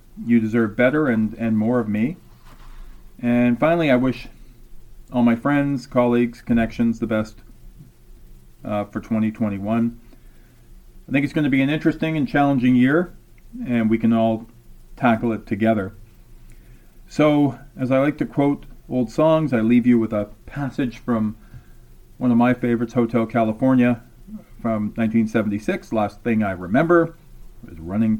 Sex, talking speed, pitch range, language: male, 145 wpm, 110-135 Hz, English